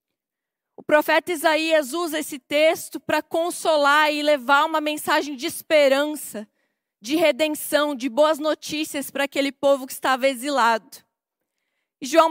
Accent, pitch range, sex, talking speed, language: Brazilian, 280-325 Hz, female, 125 wpm, Portuguese